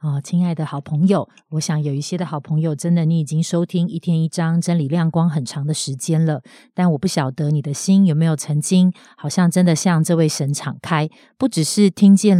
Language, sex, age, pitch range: Chinese, female, 30-49, 150-175 Hz